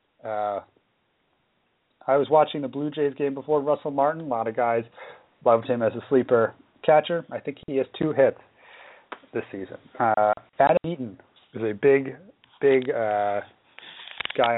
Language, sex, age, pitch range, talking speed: English, male, 30-49, 115-145 Hz, 155 wpm